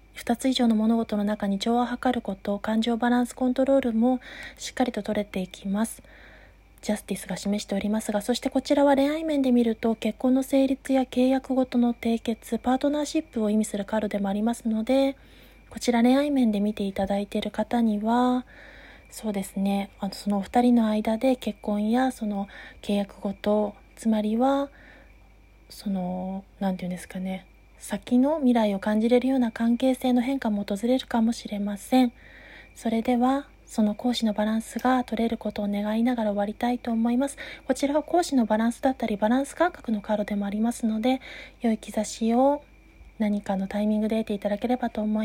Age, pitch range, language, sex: 20-39, 210-255 Hz, Japanese, female